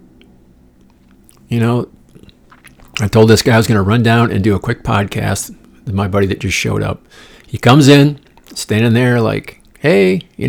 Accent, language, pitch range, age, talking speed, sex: American, English, 100-140 Hz, 50-69, 175 wpm, male